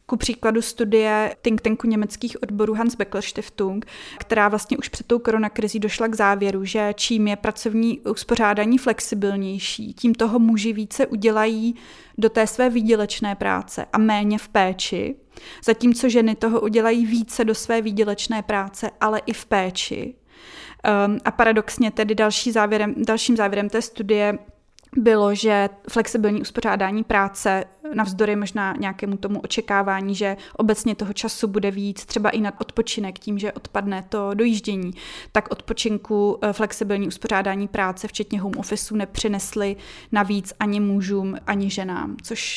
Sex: female